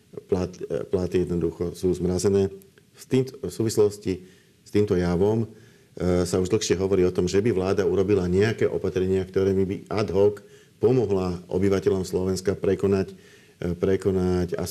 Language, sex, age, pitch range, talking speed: Slovak, male, 50-69, 90-105 Hz, 145 wpm